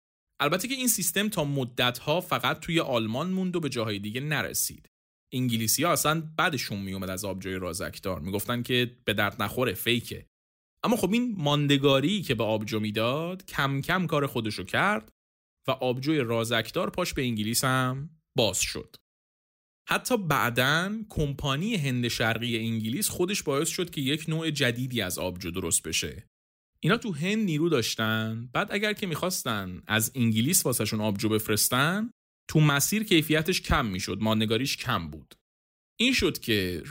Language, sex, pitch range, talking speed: Persian, male, 105-160 Hz, 150 wpm